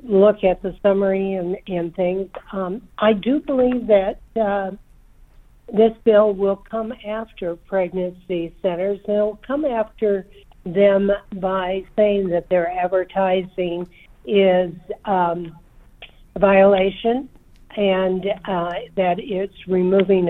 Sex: female